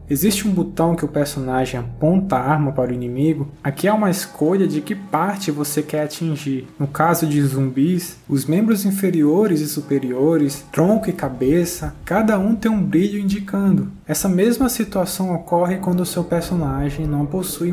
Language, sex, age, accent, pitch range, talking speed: Portuguese, male, 20-39, Brazilian, 135-170 Hz, 170 wpm